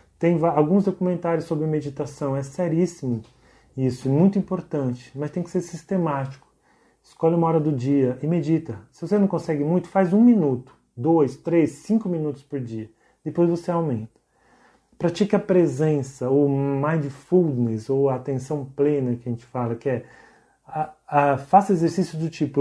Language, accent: Portuguese, Brazilian